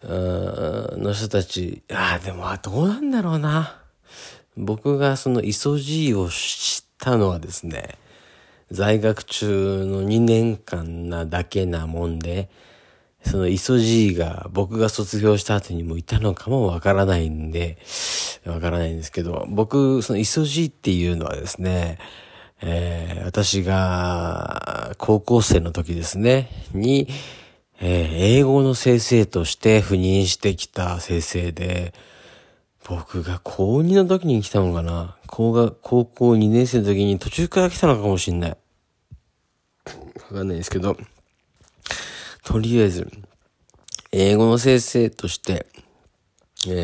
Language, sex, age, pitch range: Japanese, male, 40-59, 90-115 Hz